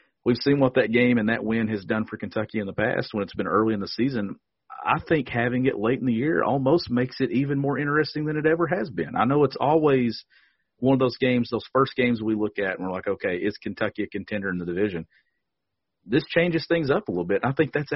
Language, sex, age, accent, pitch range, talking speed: English, male, 40-59, American, 110-135 Hz, 255 wpm